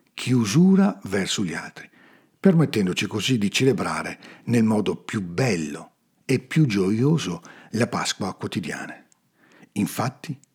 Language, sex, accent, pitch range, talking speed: Italian, male, native, 100-145 Hz, 110 wpm